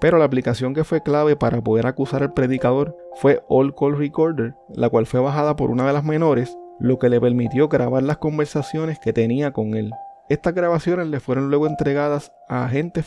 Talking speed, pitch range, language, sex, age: 195 wpm, 125-160 Hz, Spanish, male, 30-49